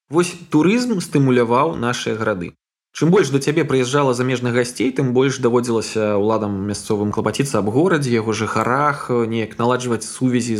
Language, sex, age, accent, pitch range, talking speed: Russian, male, 20-39, native, 115-155 Hz, 155 wpm